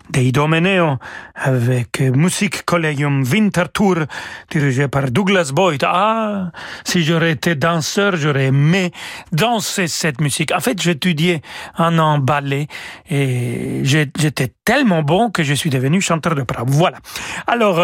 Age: 40-59